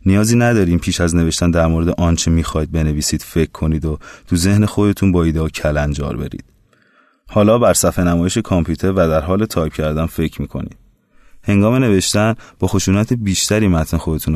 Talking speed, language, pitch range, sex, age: 165 wpm, Persian, 80-95 Hz, male, 30-49